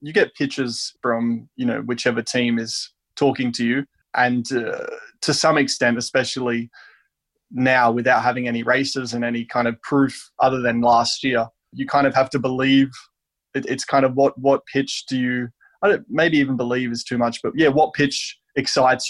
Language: English